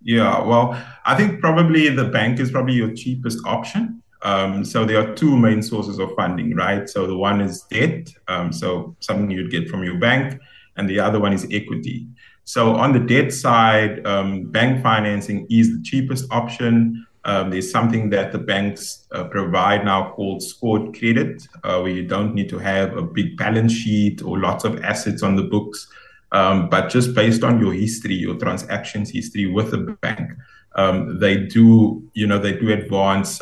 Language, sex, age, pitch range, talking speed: English, male, 20-39, 95-115 Hz, 185 wpm